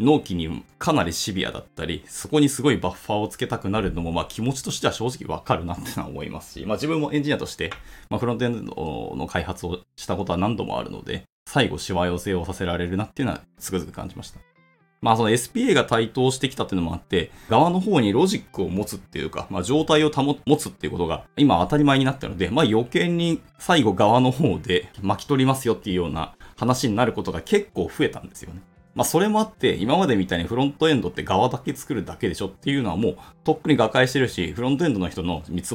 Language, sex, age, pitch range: Japanese, male, 20-39, 90-145 Hz